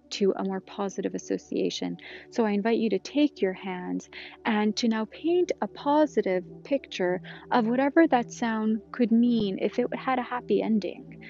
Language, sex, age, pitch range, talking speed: English, female, 30-49, 205-245 Hz, 170 wpm